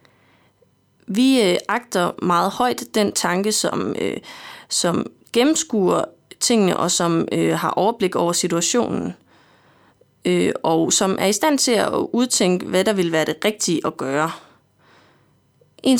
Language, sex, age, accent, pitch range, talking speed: Danish, female, 20-39, native, 185-245 Hz, 140 wpm